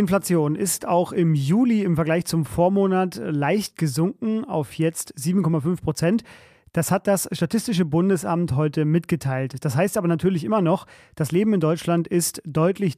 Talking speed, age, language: 155 wpm, 30-49, German